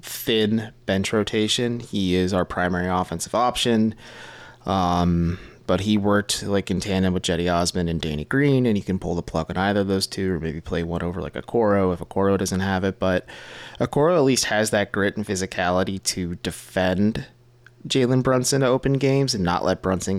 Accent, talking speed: American, 195 wpm